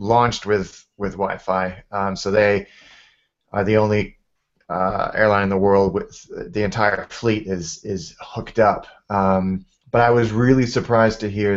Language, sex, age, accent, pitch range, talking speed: English, male, 30-49, American, 95-110 Hz, 160 wpm